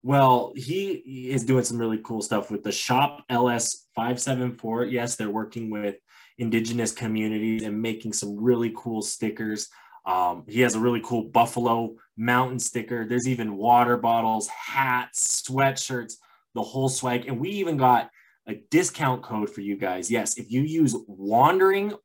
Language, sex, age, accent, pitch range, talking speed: English, male, 20-39, American, 115-135 Hz, 160 wpm